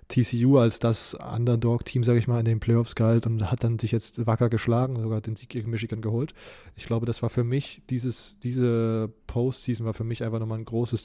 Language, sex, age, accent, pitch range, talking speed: German, male, 20-39, German, 115-130 Hz, 215 wpm